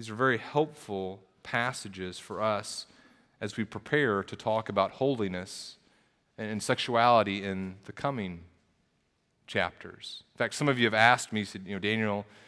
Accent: American